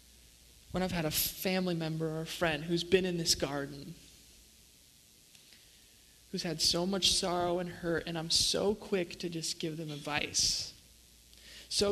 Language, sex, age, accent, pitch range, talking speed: English, male, 20-39, American, 170-220 Hz, 155 wpm